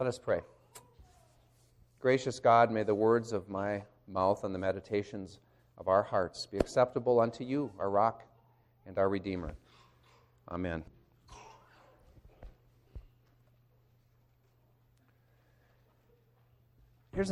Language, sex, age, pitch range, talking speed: English, male, 40-59, 110-150 Hz, 95 wpm